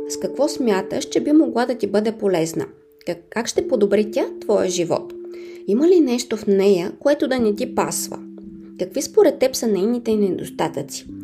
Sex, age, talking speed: female, 20-39, 170 wpm